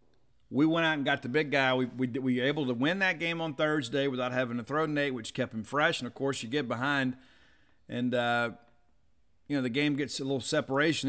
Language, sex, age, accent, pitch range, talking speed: English, male, 40-59, American, 125-150 Hz, 240 wpm